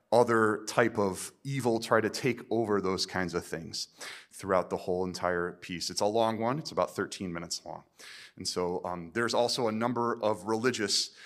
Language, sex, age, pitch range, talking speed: English, male, 30-49, 90-115 Hz, 185 wpm